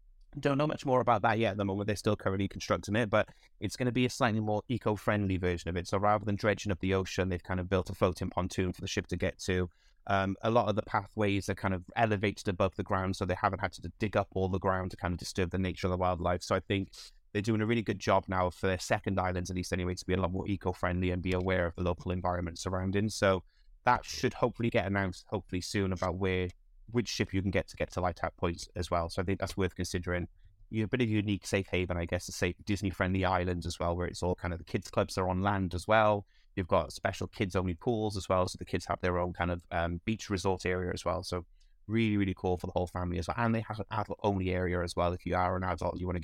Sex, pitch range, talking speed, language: male, 90-105 Hz, 285 wpm, English